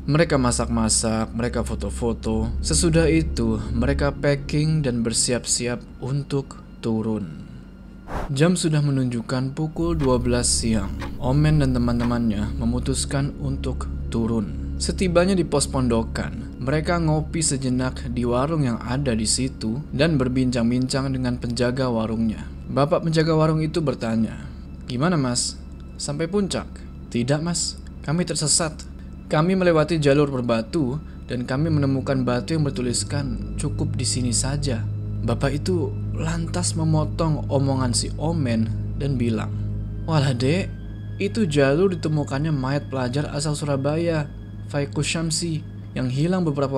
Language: Indonesian